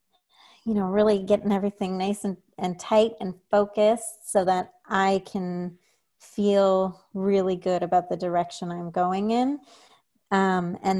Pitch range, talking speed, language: 180-205 Hz, 140 wpm, English